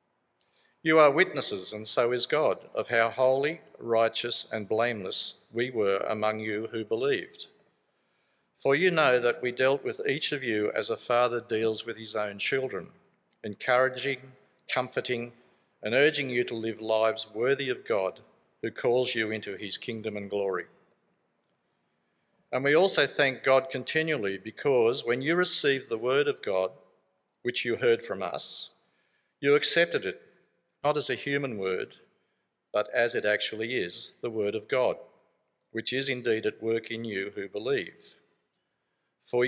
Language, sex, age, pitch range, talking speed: English, male, 50-69, 110-145 Hz, 155 wpm